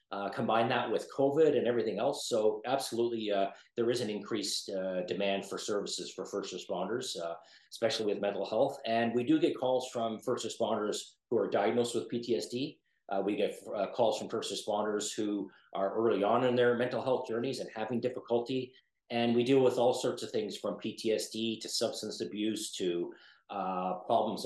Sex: male